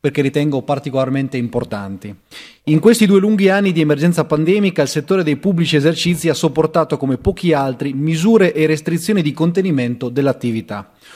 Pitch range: 140-180 Hz